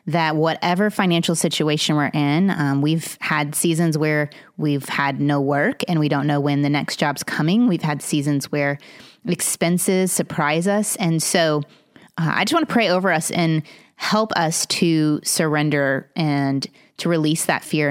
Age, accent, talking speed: 30-49, American, 170 wpm